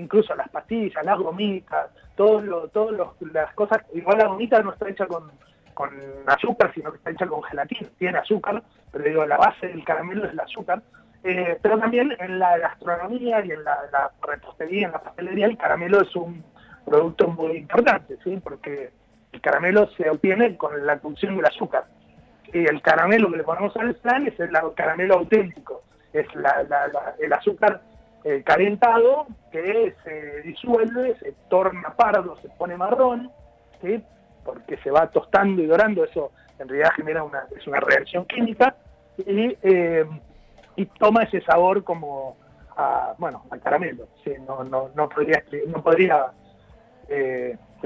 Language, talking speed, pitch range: Spanish, 165 wpm, 155-215 Hz